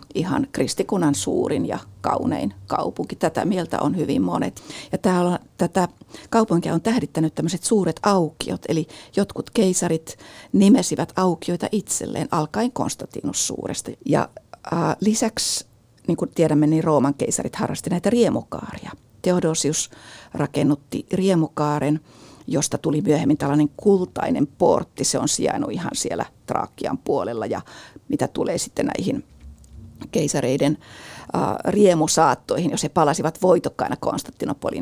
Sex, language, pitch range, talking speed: female, Finnish, 150-195 Hz, 120 wpm